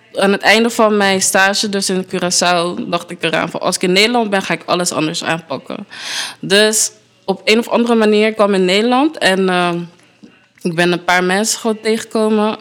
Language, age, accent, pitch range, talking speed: Dutch, 20-39, Dutch, 180-225 Hz, 200 wpm